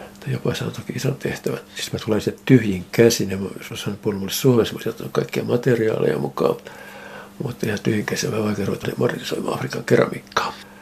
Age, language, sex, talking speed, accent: 60-79, Finnish, male, 185 wpm, native